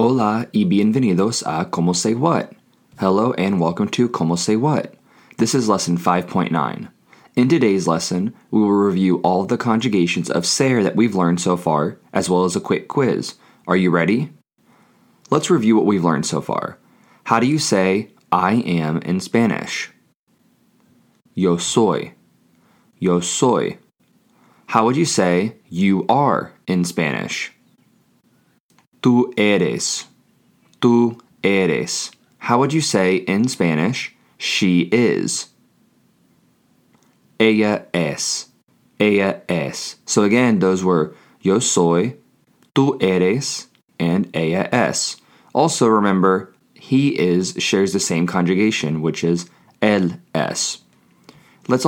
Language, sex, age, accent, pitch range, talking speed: English, male, 20-39, American, 90-115 Hz, 130 wpm